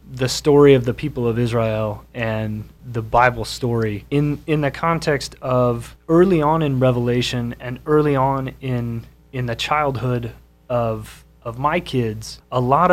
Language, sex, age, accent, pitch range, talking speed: English, male, 30-49, American, 120-140 Hz, 155 wpm